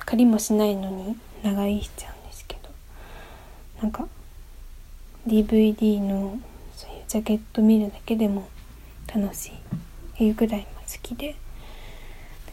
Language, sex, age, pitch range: Japanese, female, 20-39, 200-225 Hz